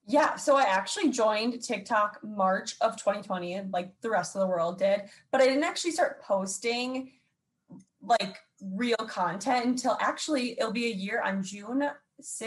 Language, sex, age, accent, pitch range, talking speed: English, female, 20-39, American, 190-255 Hz, 165 wpm